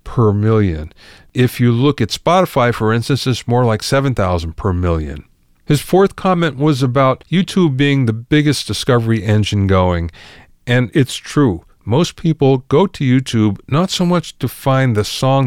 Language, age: English, 50-69